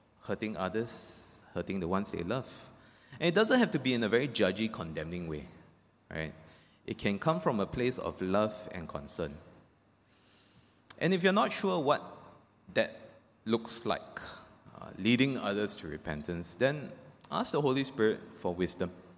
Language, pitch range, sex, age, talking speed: English, 100-155 Hz, male, 20-39, 160 wpm